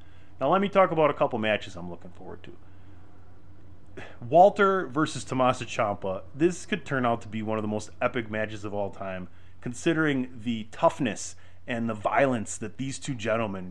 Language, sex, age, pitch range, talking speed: English, male, 30-49, 95-130 Hz, 180 wpm